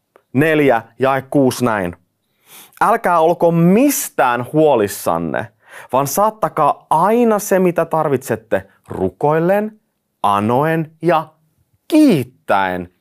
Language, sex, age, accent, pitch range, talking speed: Finnish, male, 30-49, native, 110-170 Hz, 85 wpm